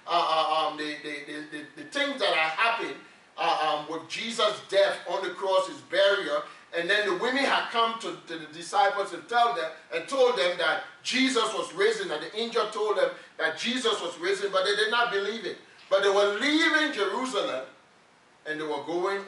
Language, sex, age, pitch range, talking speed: English, male, 40-59, 160-235 Hz, 195 wpm